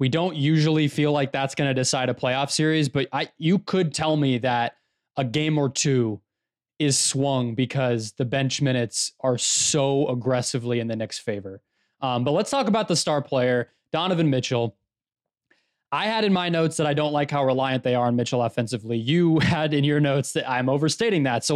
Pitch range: 125-160 Hz